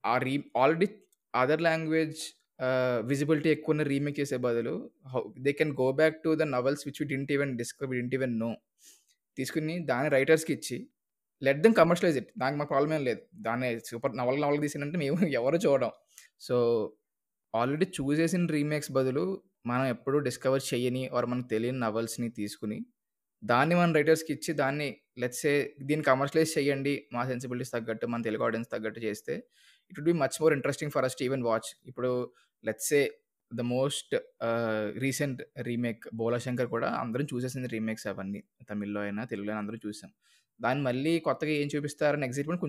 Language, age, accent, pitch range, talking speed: Telugu, 20-39, native, 120-150 Hz, 175 wpm